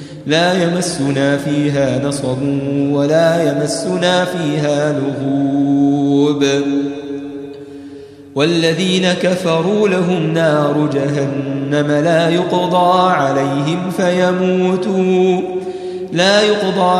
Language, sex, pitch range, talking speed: Arabic, male, 145-205 Hz, 65 wpm